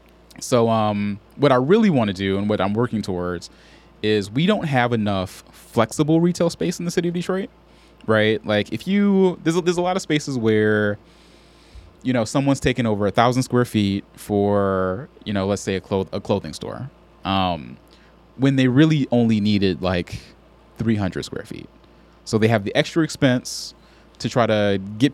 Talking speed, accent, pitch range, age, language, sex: 180 wpm, American, 100-140 Hz, 20-39, English, male